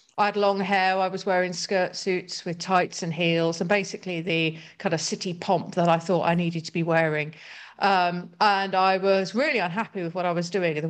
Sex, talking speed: female, 225 wpm